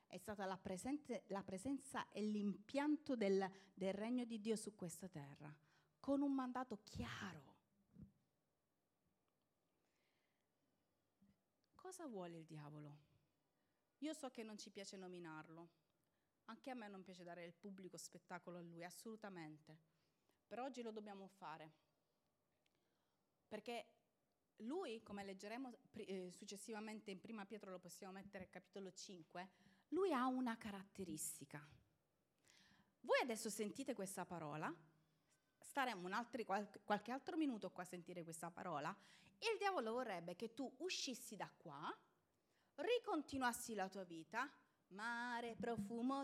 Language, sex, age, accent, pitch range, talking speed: Italian, female, 30-49, native, 185-245 Hz, 125 wpm